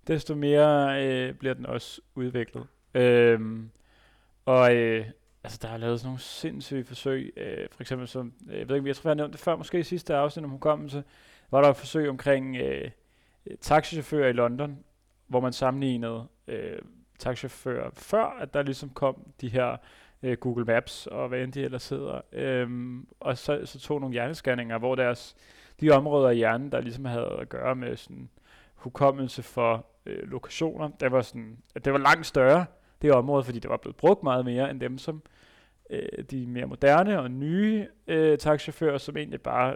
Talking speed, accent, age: 180 wpm, native, 30-49